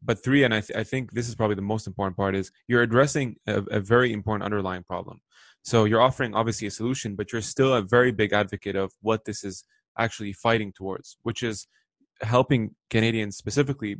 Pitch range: 105-120 Hz